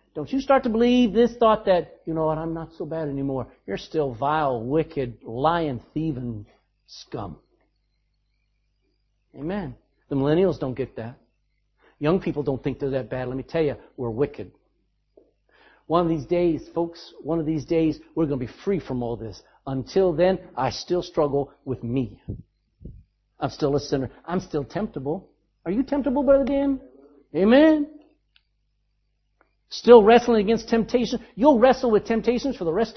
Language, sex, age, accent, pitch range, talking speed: English, male, 50-69, American, 140-230 Hz, 165 wpm